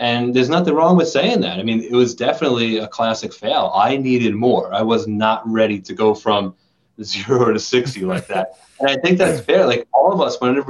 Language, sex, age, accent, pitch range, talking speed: English, male, 30-49, American, 120-165 Hz, 225 wpm